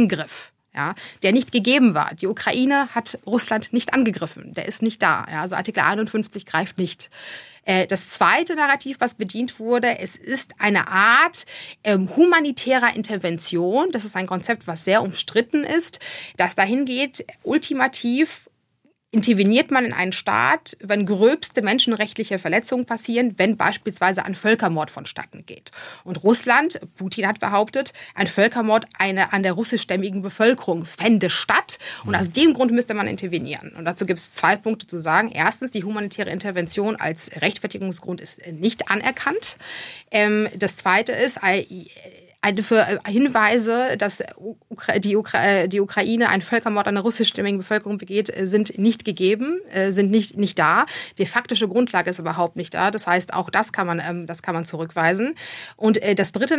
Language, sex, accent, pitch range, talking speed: German, female, German, 185-235 Hz, 155 wpm